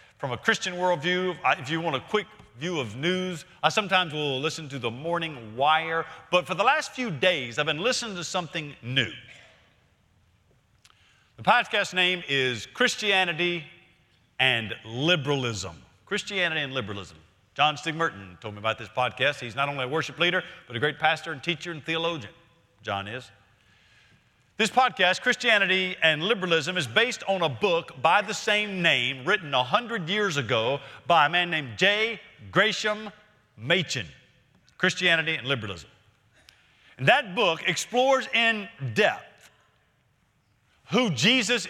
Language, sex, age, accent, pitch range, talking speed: English, male, 50-69, American, 130-200 Hz, 145 wpm